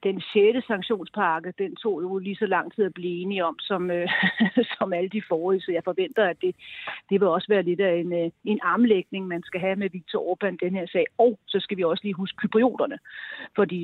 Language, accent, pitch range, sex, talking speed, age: Danish, native, 180-215 Hz, female, 220 wpm, 40-59